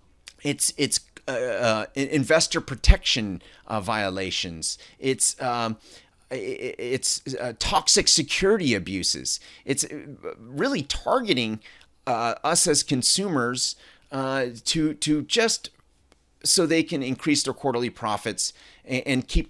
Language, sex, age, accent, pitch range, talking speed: English, male, 30-49, American, 115-145 Hz, 115 wpm